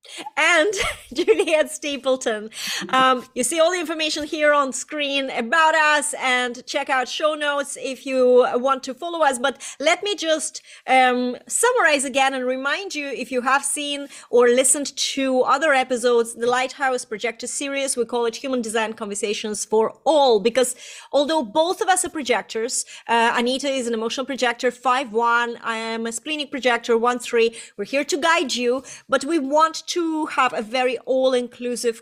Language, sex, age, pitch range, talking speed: English, female, 30-49, 235-285 Hz, 170 wpm